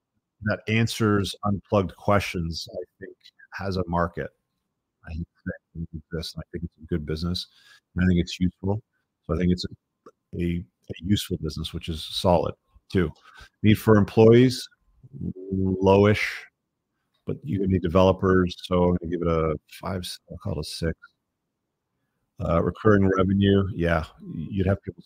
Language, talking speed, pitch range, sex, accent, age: English, 140 wpm, 85-105 Hz, male, American, 40-59